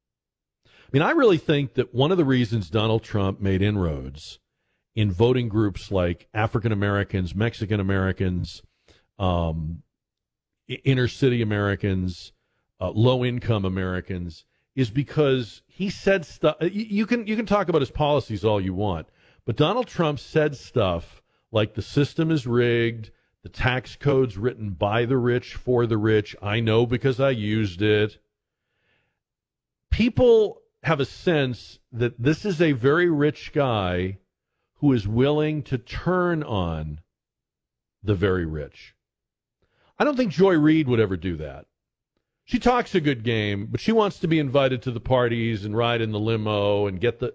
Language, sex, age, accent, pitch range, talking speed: English, male, 50-69, American, 100-140 Hz, 155 wpm